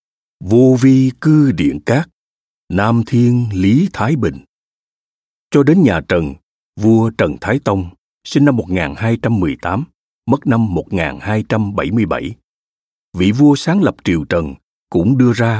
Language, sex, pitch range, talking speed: Vietnamese, male, 95-135 Hz, 125 wpm